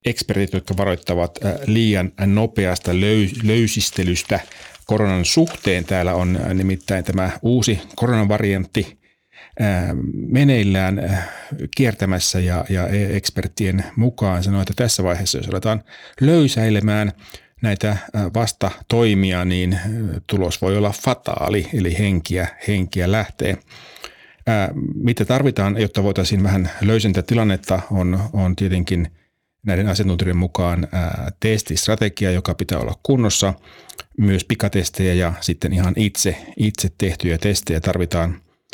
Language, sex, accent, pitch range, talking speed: Finnish, male, native, 90-105 Hz, 105 wpm